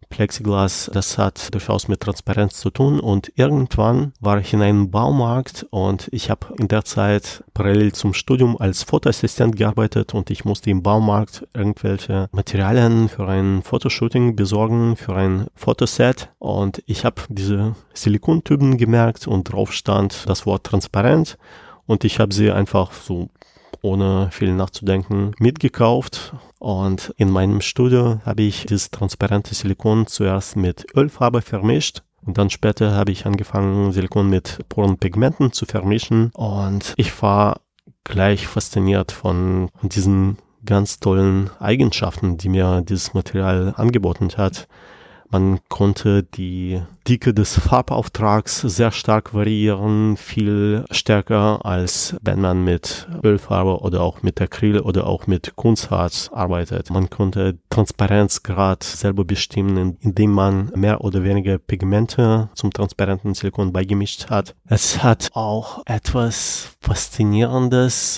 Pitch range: 95-110 Hz